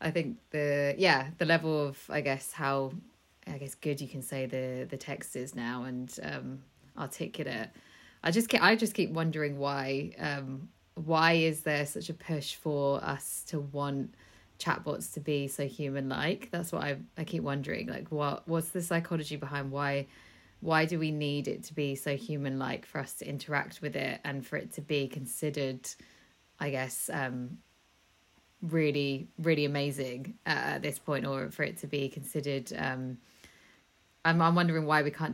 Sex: female